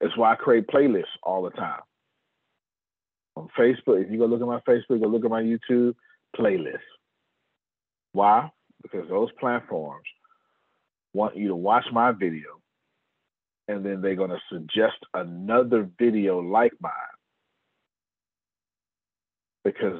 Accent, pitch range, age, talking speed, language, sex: American, 90-120 Hz, 40-59, 130 wpm, English, male